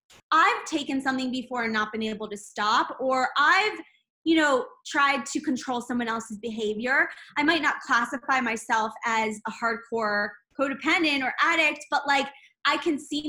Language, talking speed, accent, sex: English, 165 wpm, American, female